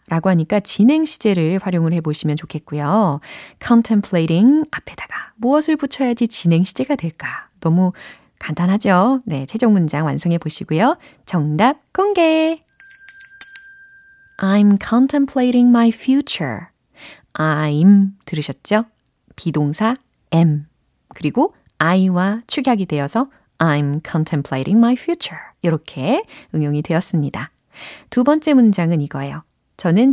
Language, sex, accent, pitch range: Korean, female, native, 160-255 Hz